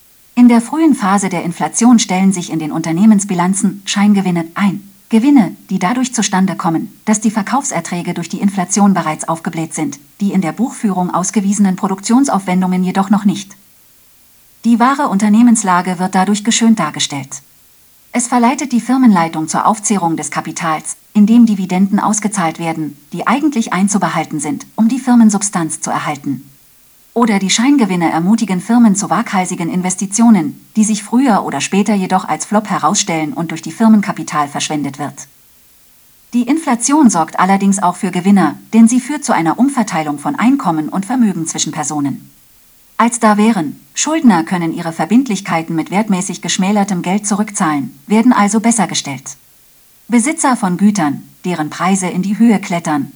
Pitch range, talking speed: 170-225 Hz, 150 wpm